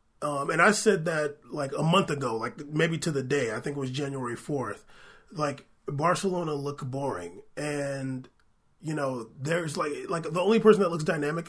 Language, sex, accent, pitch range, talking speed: English, male, American, 140-175 Hz, 190 wpm